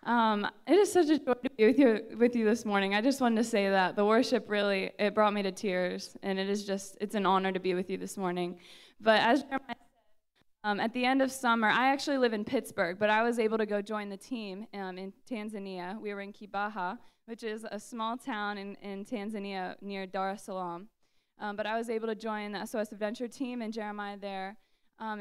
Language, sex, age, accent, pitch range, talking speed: English, female, 20-39, American, 200-235 Hz, 235 wpm